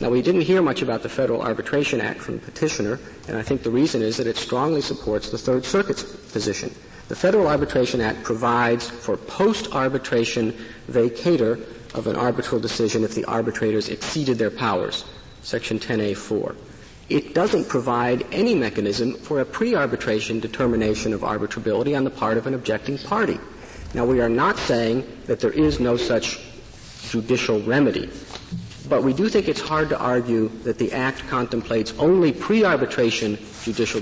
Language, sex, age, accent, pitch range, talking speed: English, male, 50-69, American, 110-130 Hz, 160 wpm